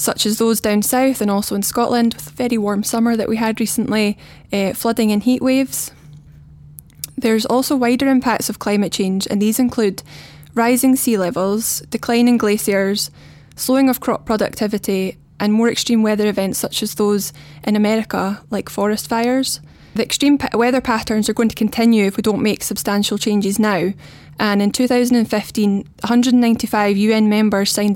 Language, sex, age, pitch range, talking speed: English, female, 20-39, 205-230 Hz, 165 wpm